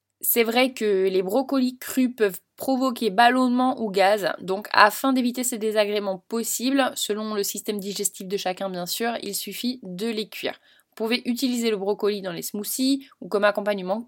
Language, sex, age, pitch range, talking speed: French, female, 20-39, 195-255 Hz, 175 wpm